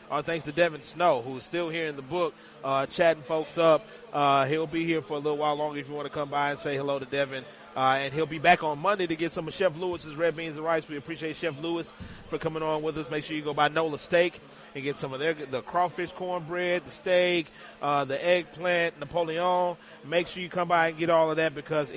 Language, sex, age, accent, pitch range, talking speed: English, male, 30-49, American, 140-175 Hz, 255 wpm